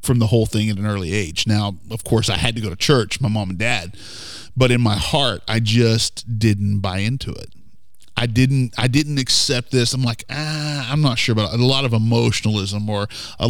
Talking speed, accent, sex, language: 220 wpm, American, male, English